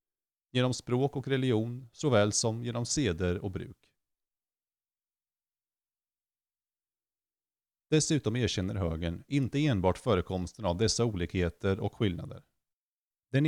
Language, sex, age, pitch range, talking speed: Swedish, male, 30-49, 95-130 Hz, 100 wpm